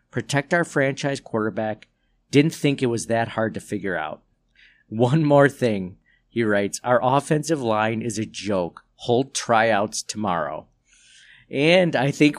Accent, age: American, 40-59